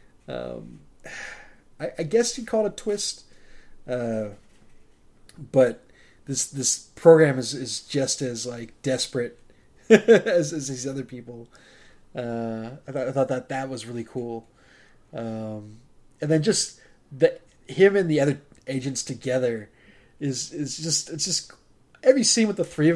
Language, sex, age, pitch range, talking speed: English, male, 20-39, 120-150 Hz, 150 wpm